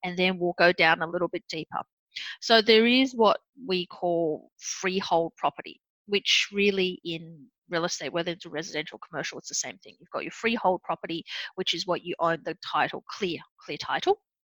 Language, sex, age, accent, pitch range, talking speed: English, female, 30-49, Australian, 165-210 Hz, 195 wpm